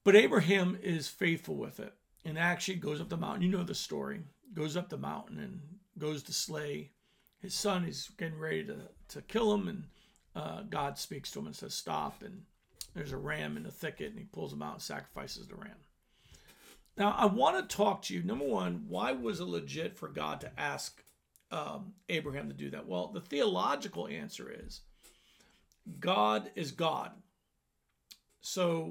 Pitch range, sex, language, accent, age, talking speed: 165-205 Hz, male, English, American, 50-69, 185 wpm